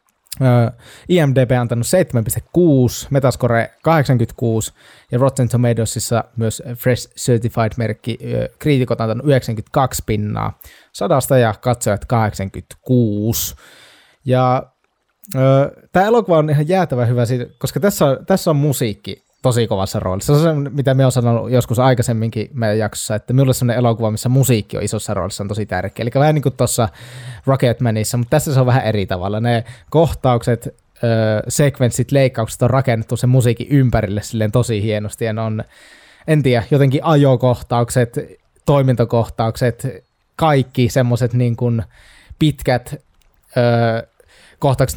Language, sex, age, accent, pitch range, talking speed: Finnish, male, 20-39, native, 110-130 Hz, 135 wpm